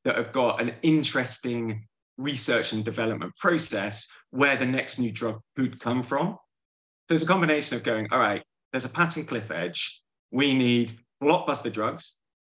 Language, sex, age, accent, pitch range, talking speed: English, male, 20-39, British, 110-135 Hz, 160 wpm